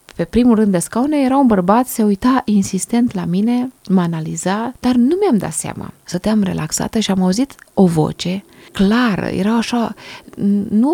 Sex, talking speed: female, 170 wpm